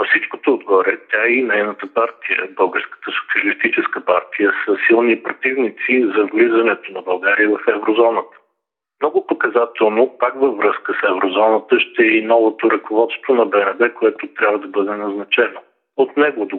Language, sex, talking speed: Bulgarian, male, 145 wpm